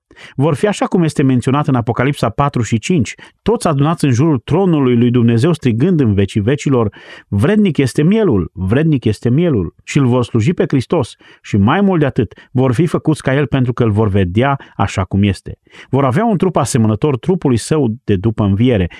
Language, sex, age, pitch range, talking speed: Romanian, male, 30-49, 105-145 Hz, 195 wpm